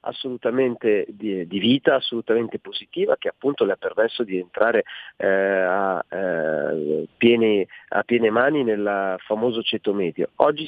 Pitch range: 110-150 Hz